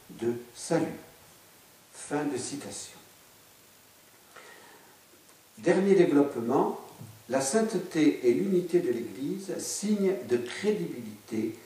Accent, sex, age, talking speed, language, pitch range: French, male, 60-79, 80 wpm, French, 130-210 Hz